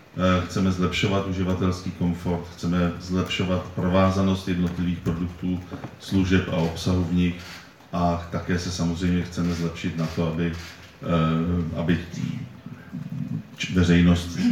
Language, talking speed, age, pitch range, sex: Czech, 105 wpm, 40-59, 85-90 Hz, male